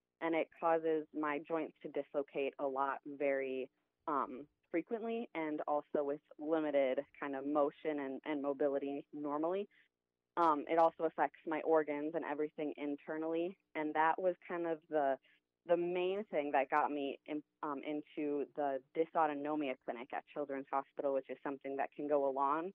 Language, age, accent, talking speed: English, 20-39, American, 160 wpm